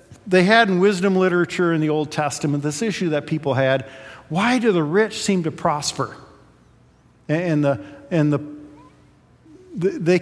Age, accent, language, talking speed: 50-69, American, English, 155 wpm